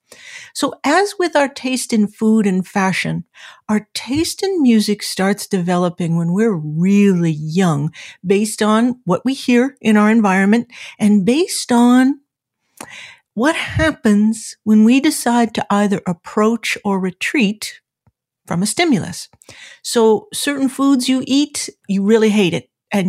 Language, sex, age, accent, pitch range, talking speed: English, female, 50-69, American, 190-255 Hz, 140 wpm